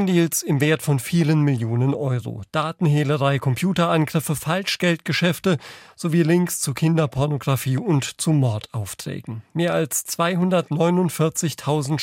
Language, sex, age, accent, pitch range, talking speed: German, male, 40-59, German, 145-175 Hz, 100 wpm